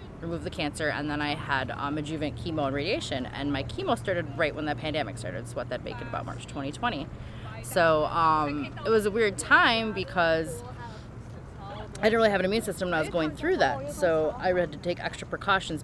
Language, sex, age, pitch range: English, female, 20-39, 135-170 Hz